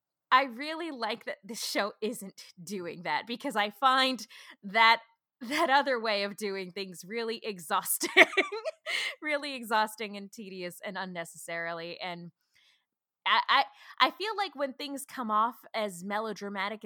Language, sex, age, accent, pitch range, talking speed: English, female, 20-39, American, 190-265 Hz, 140 wpm